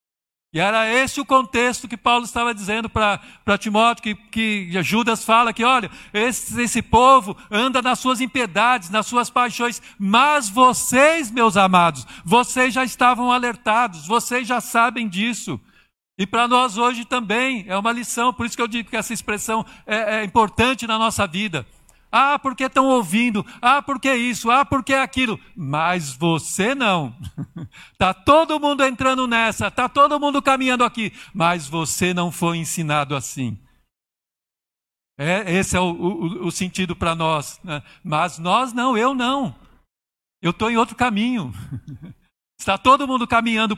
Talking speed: 155 wpm